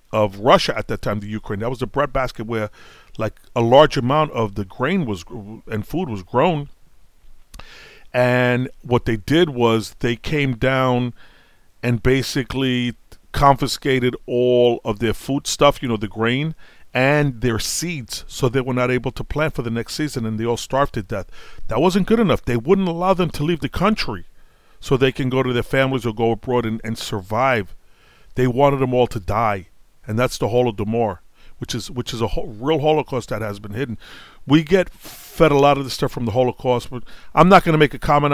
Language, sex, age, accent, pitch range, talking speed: English, male, 40-59, American, 115-140 Hz, 205 wpm